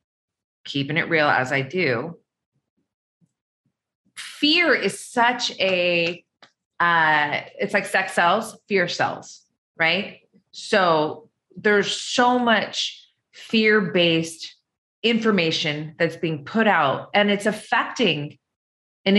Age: 30-49